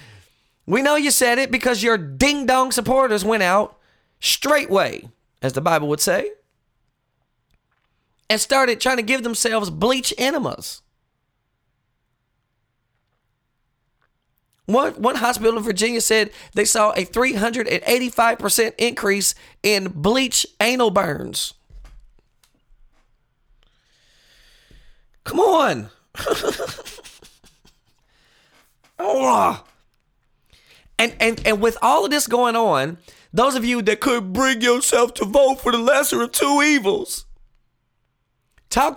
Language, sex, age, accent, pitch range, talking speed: English, male, 30-49, American, 160-250 Hz, 105 wpm